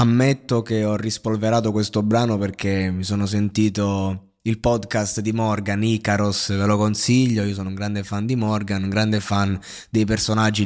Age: 20-39